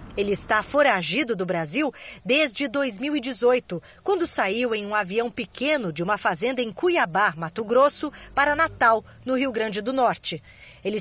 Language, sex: Portuguese, female